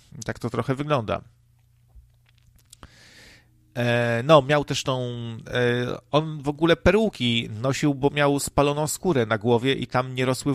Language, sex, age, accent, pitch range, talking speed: Polish, male, 40-59, native, 115-140 Hz, 140 wpm